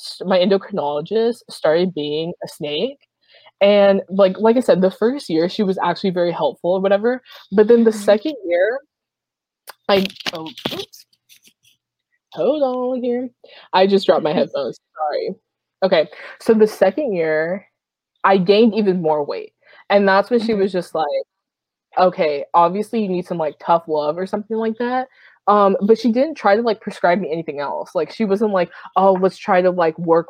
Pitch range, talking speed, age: 170-225 Hz, 175 wpm, 20-39